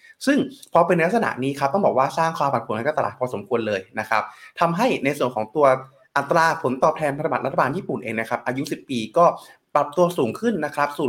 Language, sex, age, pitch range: Thai, male, 20-39, 120-165 Hz